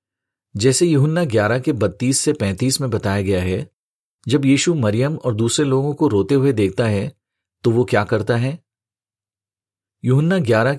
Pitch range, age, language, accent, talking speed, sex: 100-140 Hz, 40-59, Hindi, native, 160 wpm, male